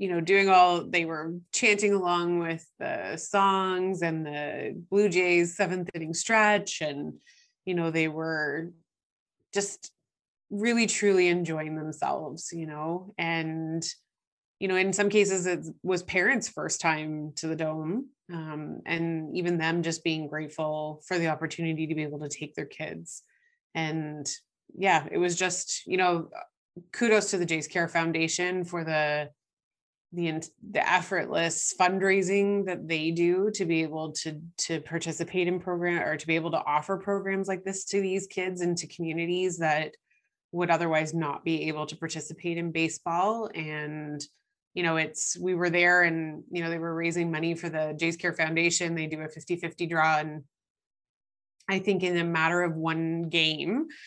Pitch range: 155-180 Hz